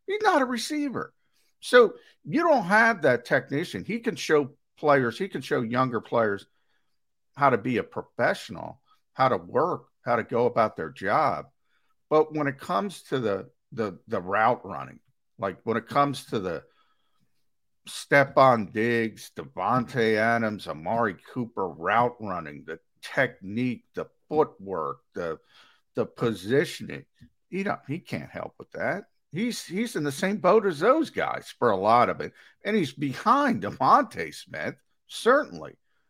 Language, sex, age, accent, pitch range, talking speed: English, male, 50-69, American, 115-160 Hz, 150 wpm